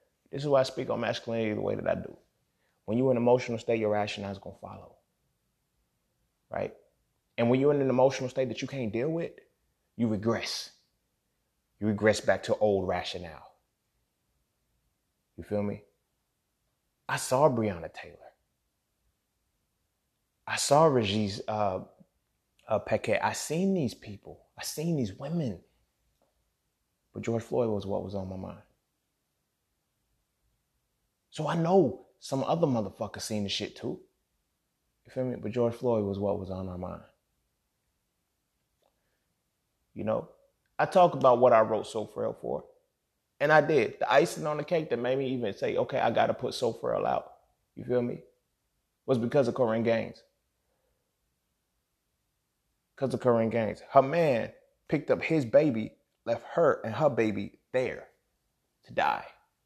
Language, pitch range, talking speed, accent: English, 105-135 Hz, 155 wpm, American